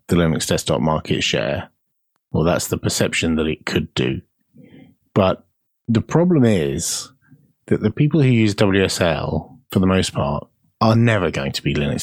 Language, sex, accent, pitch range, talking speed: English, male, British, 90-110 Hz, 165 wpm